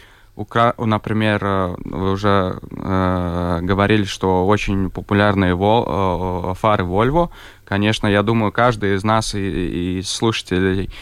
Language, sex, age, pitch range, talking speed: Russian, male, 20-39, 95-115 Hz, 105 wpm